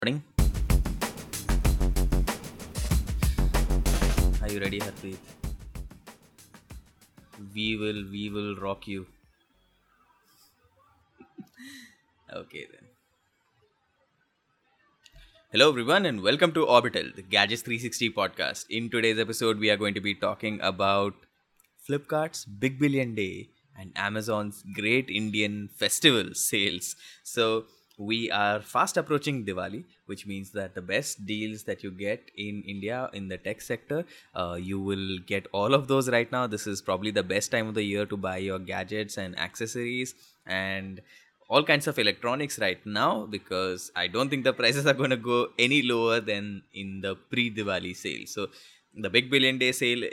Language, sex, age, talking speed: English, male, 20-39, 140 wpm